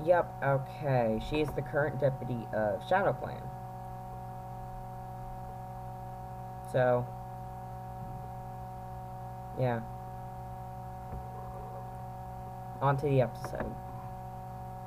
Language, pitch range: English, 110-125 Hz